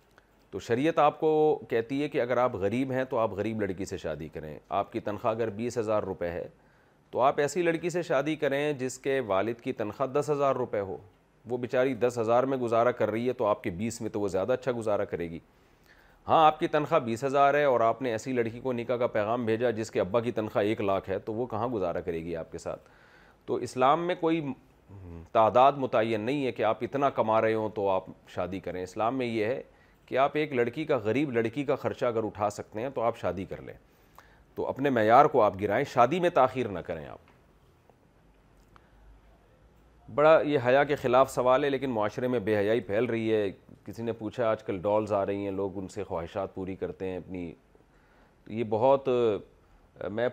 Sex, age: male, 40-59